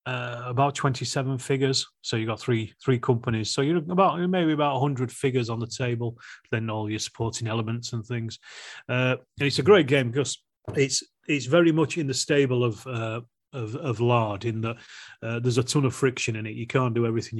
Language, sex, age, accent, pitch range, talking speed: English, male, 30-49, British, 115-130 Hz, 210 wpm